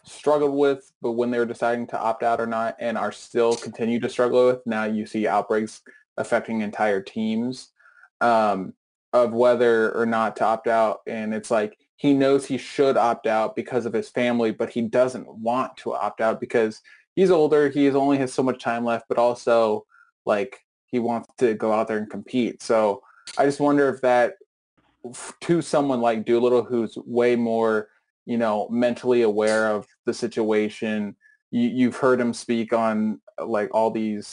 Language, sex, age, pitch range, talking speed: English, male, 20-39, 110-130 Hz, 180 wpm